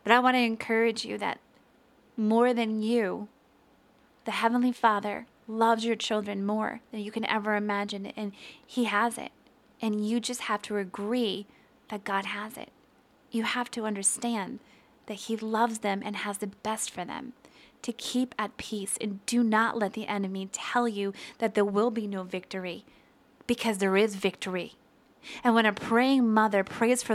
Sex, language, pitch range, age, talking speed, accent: female, English, 205-235 Hz, 20-39, 175 wpm, American